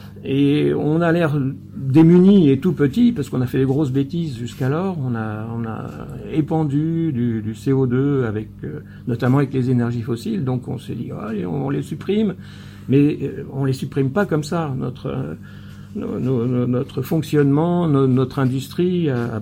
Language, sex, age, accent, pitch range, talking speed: French, male, 60-79, French, 120-150 Hz, 180 wpm